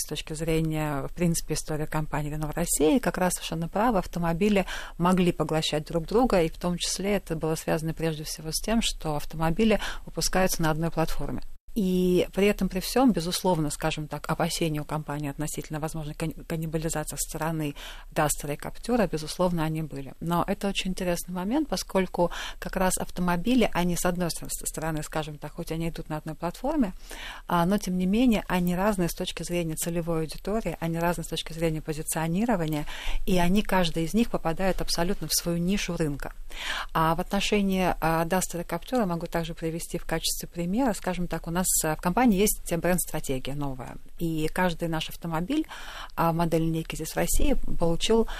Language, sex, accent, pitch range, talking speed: Russian, female, native, 155-180 Hz, 170 wpm